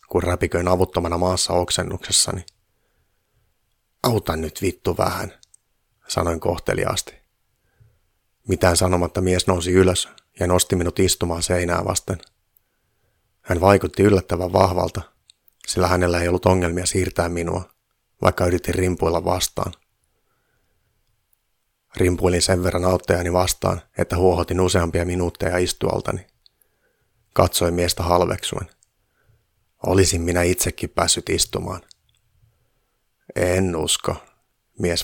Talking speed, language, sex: 100 wpm, Finnish, male